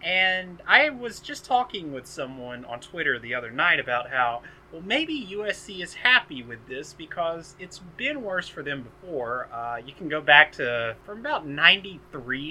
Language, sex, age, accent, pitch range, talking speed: English, male, 30-49, American, 135-195 Hz, 175 wpm